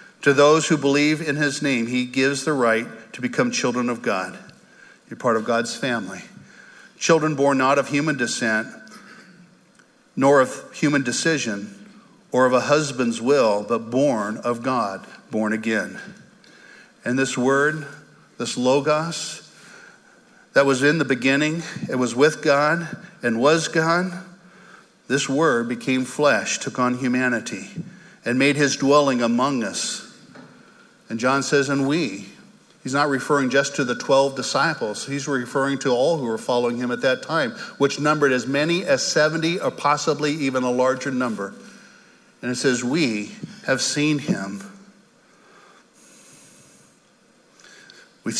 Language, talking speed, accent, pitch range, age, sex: English, 145 wpm, American, 125-150 Hz, 50-69, male